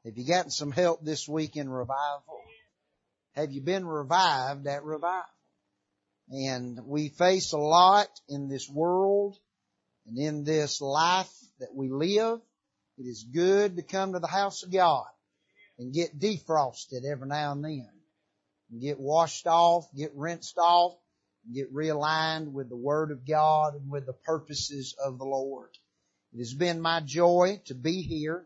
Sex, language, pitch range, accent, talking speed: male, English, 140-175 Hz, American, 160 wpm